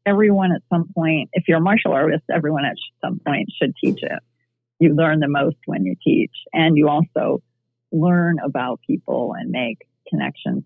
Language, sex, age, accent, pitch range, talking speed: English, female, 40-59, American, 130-165 Hz, 180 wpm